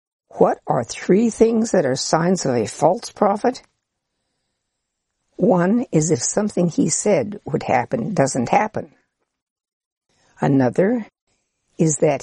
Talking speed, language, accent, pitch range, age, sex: 120 wpm, English, American, 145-220 Hz, 60-79, female